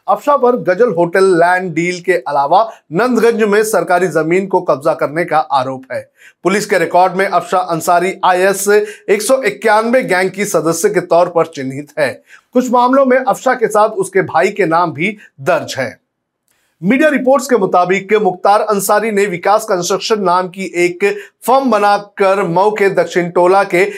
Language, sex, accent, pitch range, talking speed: Hindi, male, native, 170-210 Hz, 170 wpm